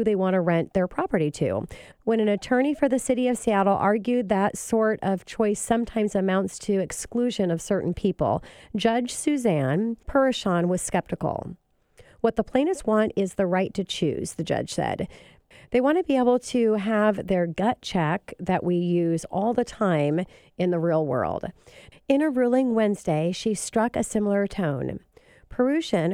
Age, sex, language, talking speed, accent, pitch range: 40-59, female, English, 170 wpm, American, 180-225 Hz